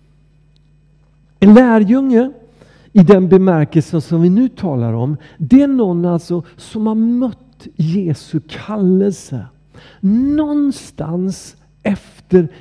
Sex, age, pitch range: male, 50-69, 145-185 Hz